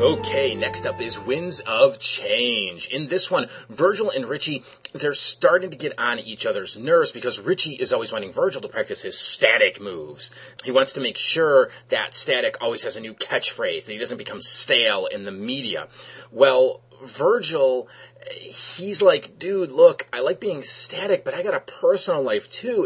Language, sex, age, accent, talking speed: English, male, 30-49, American, 180 wpm